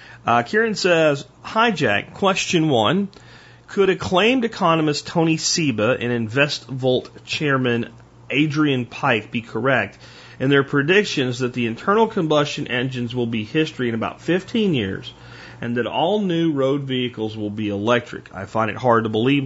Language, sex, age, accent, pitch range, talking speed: English, male, 40-59, American, 115-145 Hz, 150 wpm